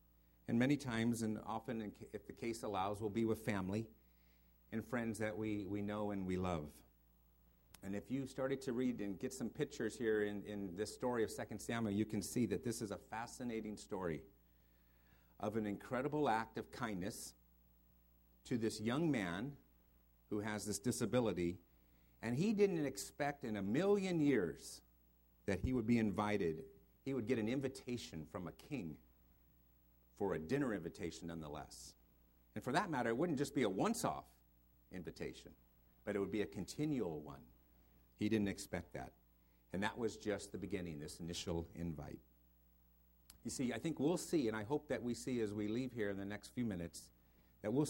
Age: 50-69